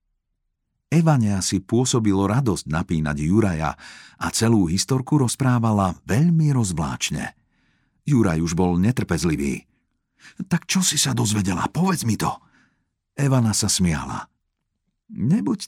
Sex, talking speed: male, 105 wpm